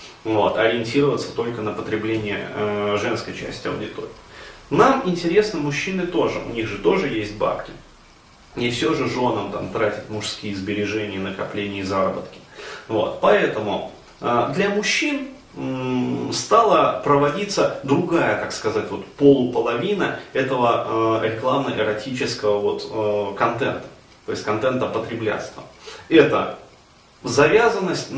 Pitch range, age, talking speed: 115-145 Hz, 30-49, 115 wpm